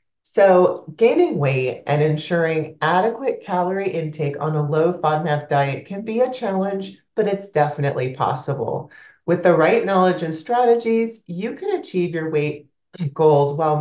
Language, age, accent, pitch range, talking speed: English, 30-49, American, 145-195 Hz, 150 wpm